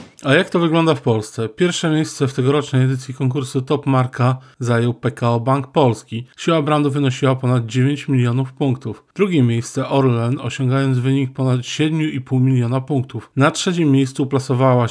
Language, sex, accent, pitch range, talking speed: Polish, male, native, 125-145 Hz, 155 wpm